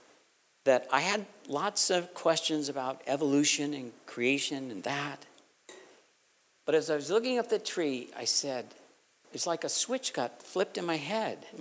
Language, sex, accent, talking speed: English, male, American, 165 wpm